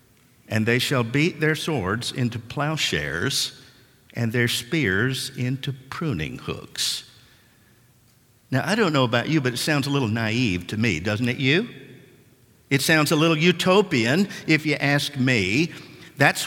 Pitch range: 120-160 Hz